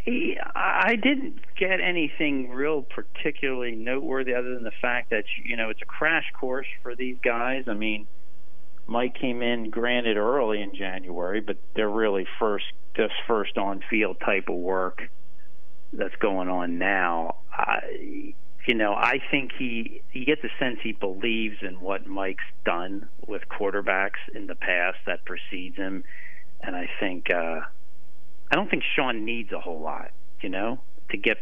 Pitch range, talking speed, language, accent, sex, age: 85-125 Hz, 165 wpm, English, American, male, 40-59